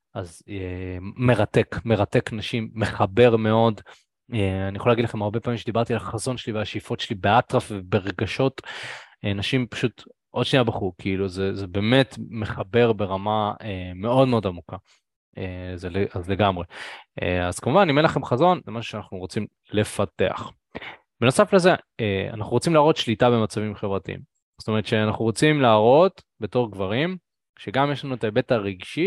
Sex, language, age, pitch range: male, Hebrew, 20-39, 100-130 Hz